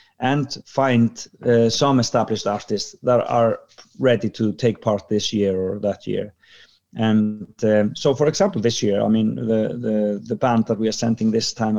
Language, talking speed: English, 185 wpm